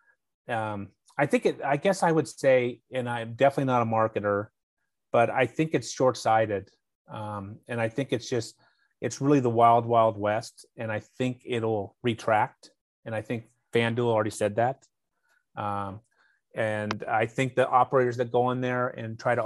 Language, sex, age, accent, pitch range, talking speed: English, male, 30-49, American, 110-125 Hz, 180 wpm